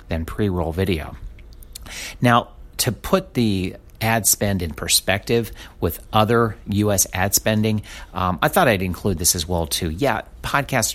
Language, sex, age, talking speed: English, male, 50-69, 150 wpm